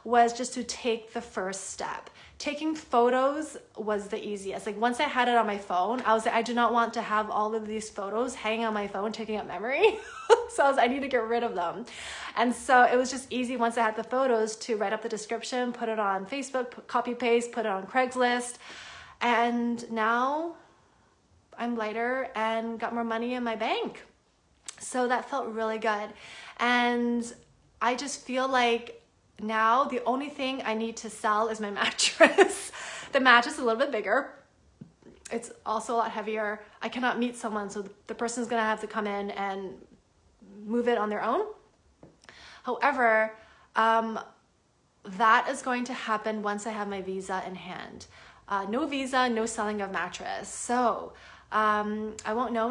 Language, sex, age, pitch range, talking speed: English, female, 20-39, 215-245 Hz, 190 wpm